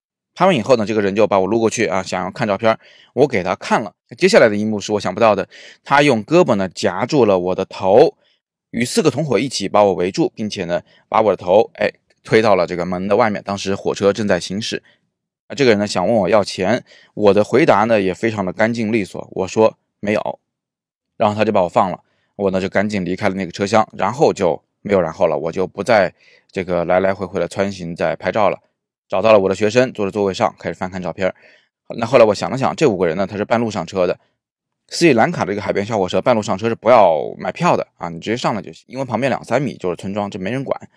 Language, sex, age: Chinese, male, 20-39